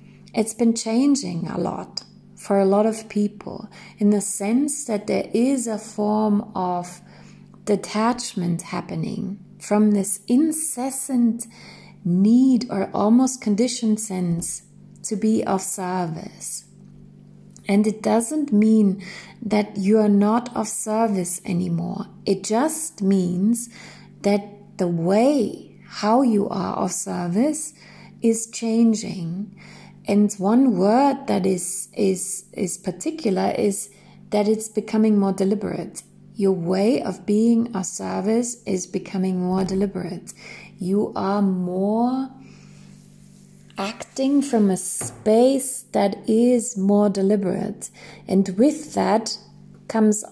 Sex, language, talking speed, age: female, English, 115 wpm, 30-49